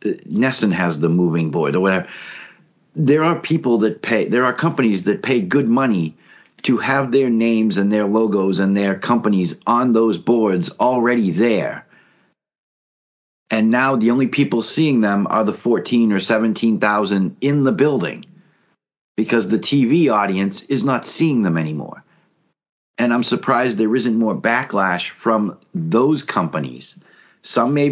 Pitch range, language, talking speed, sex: 90-125 Hz, English, 150 wpm, male